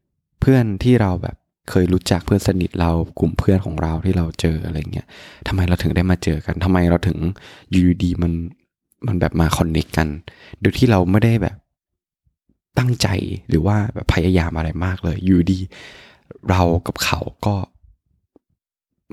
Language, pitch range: Thai, 85-105 Hz